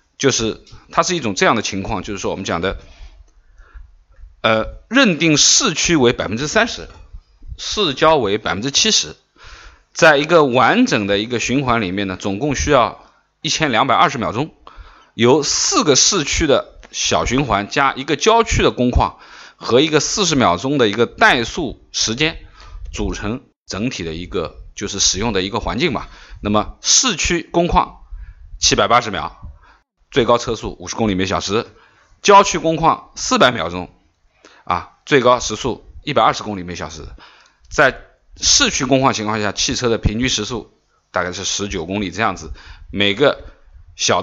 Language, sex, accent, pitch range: Chinese, male, native, 90-135 Hz